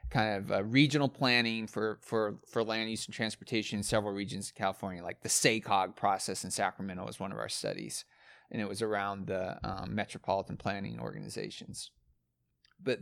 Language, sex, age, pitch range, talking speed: English, male, 30-49, 105-125 Hz, 175 wpm